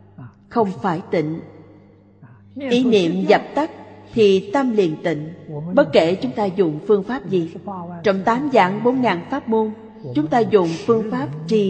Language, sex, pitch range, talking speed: Vietnamese, female, 155-225 Hz, 160 wpm